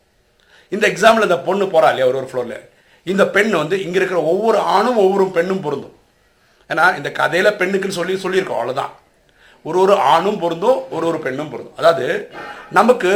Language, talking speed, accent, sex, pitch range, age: English, 95 wpm, Indian, male, 160-205 Hz, 50-69